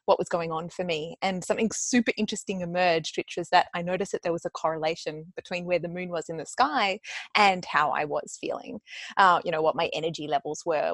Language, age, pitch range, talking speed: English, 20-39, 170-205 Hz, 230 wpm